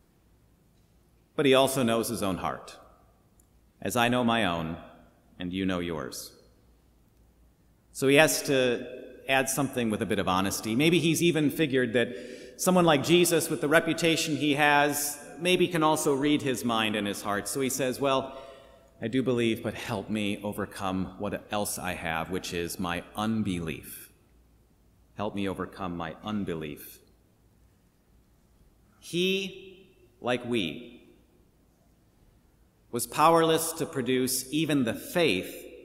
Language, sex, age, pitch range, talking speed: English, male, 40-59, 105-145 Hz, 140 wpm